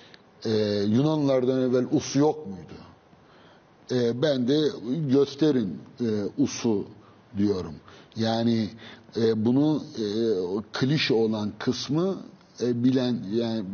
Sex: male